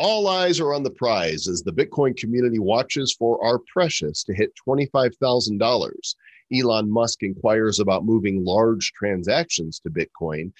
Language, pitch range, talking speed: English, 110-180 Hz, 145 wpm